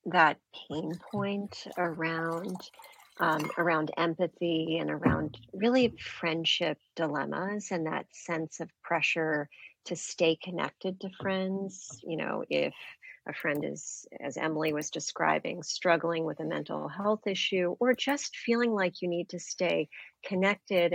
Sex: female